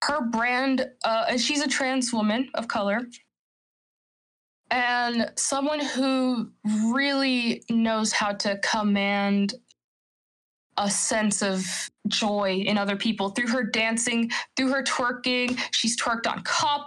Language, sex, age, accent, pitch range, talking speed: English, female, 20-39, American, 205-250 Hz, 120 wpm